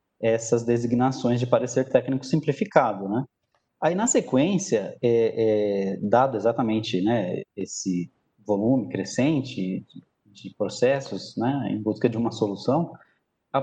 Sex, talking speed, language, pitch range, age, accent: male, 125 wpm, Portuguese, 115-140 Hz, 20-39, Brazilian